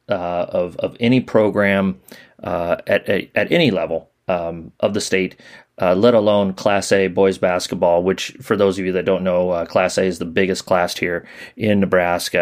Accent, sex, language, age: American, male, English, 30-49